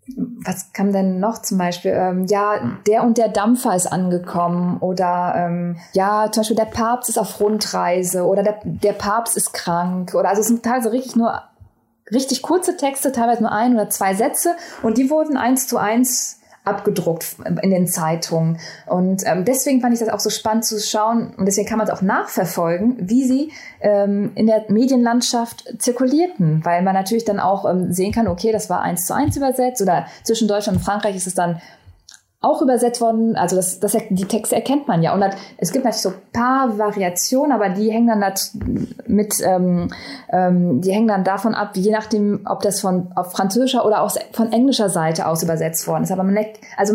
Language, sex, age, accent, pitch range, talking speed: German, female, 20-39, German, 185-235 Hz, 190 wpm